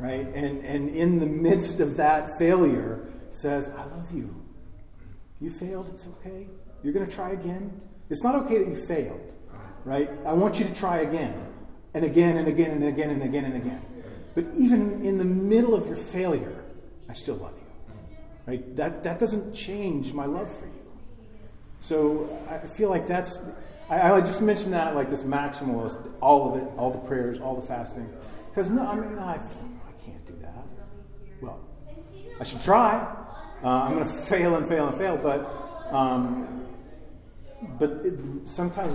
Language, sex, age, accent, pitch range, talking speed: English, male, 40-59, American, 125-185 Hz, 170 wpm